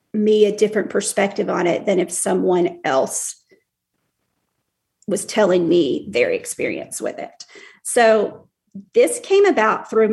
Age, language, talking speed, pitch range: 40-59, English, 130 wpm, 205-270 Hz